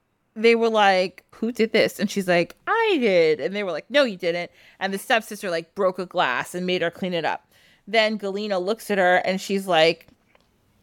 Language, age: English, 20-39